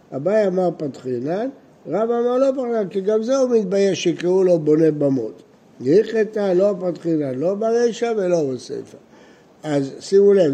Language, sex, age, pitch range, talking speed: Hebrew, male, 60-79, 160-210 Hz, 165 wpm